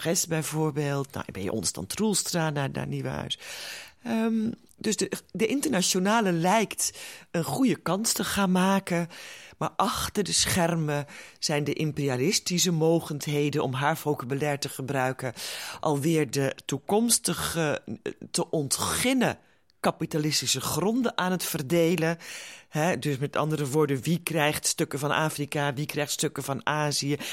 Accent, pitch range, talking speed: Dutch, 135-180 Hz, 130 wpm